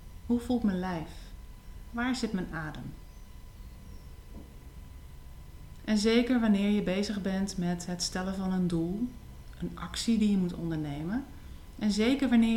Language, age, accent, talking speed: Dutch, 40-59, Dutch, 140 wpm